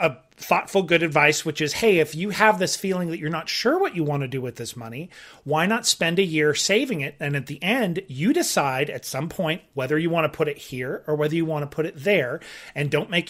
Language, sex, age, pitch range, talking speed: English, male, 30-49, 150-210 Hz, 260 wpm